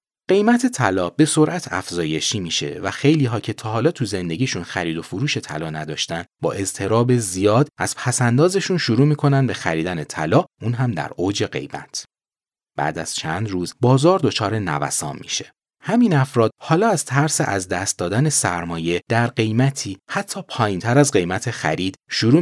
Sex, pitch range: male, 95-145 Hz